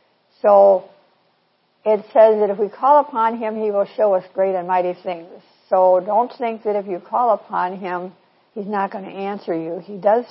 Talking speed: 200 wpm